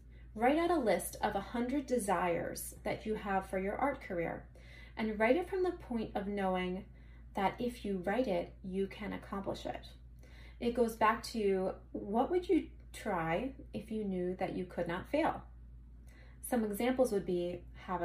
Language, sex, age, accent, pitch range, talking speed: English, female, 30-49, American, 175-235 Hz, 175 wpm